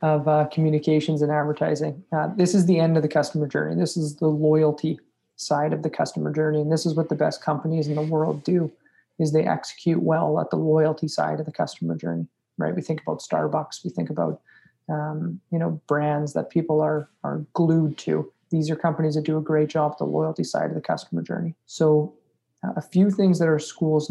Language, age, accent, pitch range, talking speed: English, 20-39, American, 150-165 Hz, 220 wpm